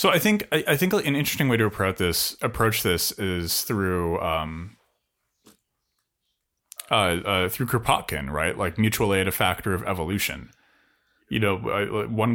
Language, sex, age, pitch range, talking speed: English, male, 30-49, 85-115 Hz, 150 wpm